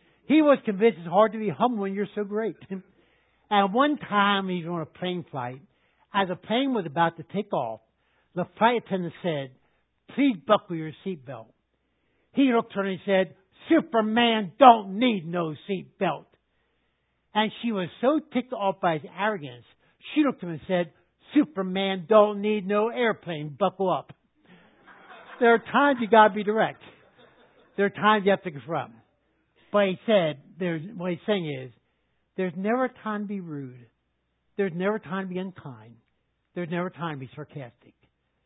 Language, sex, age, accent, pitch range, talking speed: English, male, 60-79, American, 155-215 Hz, 180 wpm